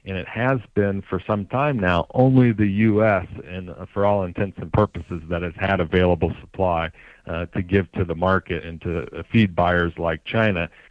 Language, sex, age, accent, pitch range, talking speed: English, male, 50-69, American, 85-105 Hz, 185 wpm